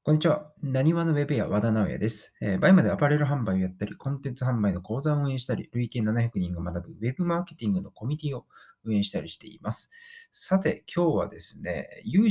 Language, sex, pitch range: Japanese, male, 100-150 Hz